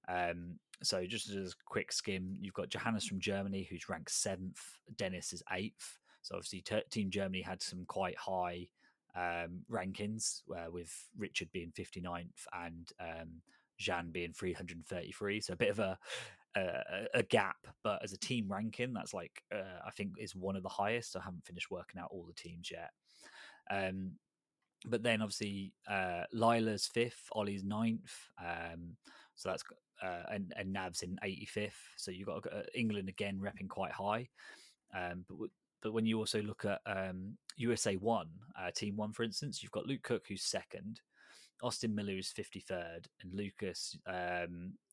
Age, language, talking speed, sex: 20-39, English, 170 wpm, male